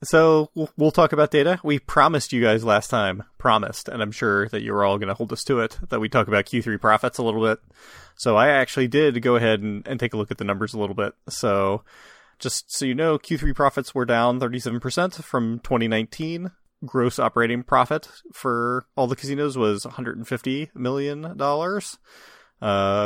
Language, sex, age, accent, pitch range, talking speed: English, male, 30-49, American, 105-145 Hz, 190 wpm